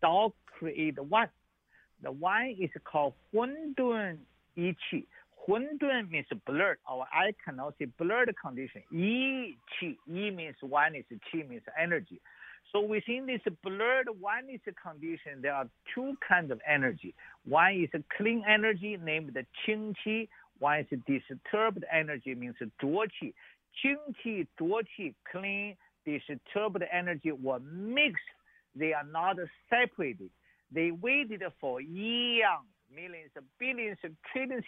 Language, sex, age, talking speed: English, male, 50-69, 130 wpm